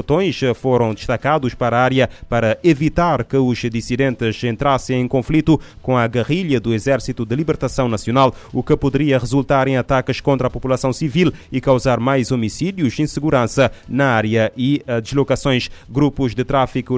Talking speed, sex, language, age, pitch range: 160 wpm, male, Portuguese, 20-39, 120-140 Hz